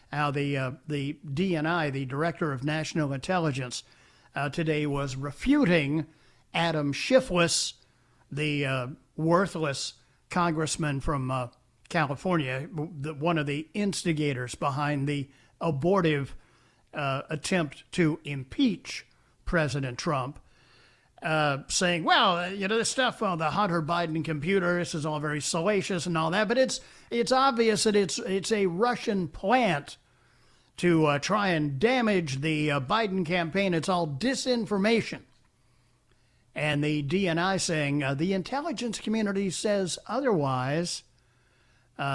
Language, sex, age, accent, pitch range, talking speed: English, male, 50-69, American, 135-185 Hz, 130 wpm